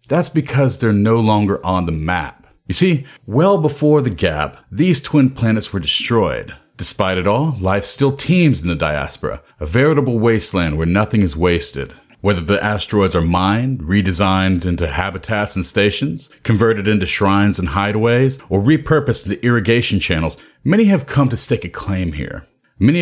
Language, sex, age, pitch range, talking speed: English, male, 40-59, 95-130 Hz, 165 wpm